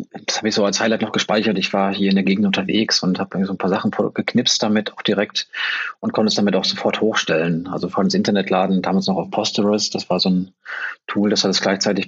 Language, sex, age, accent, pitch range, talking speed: German, male, 40-59, German, 100-130 Hz, 245 wpm